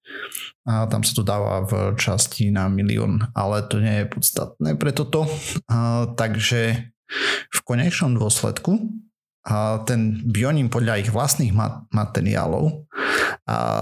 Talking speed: 130 wpm